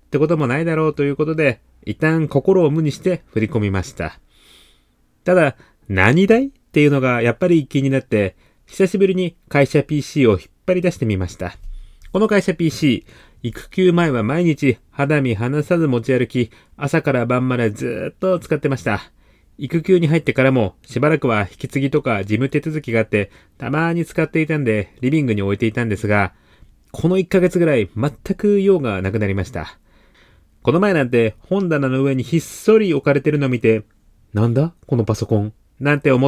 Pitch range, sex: 100-150 Hz, male